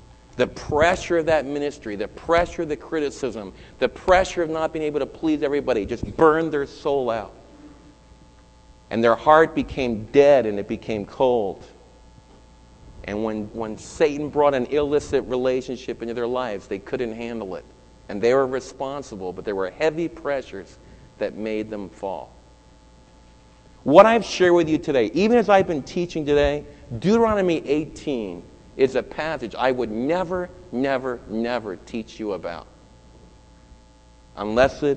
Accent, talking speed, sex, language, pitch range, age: American, 150 wpm, male, English, 110-155 Hz, 40-59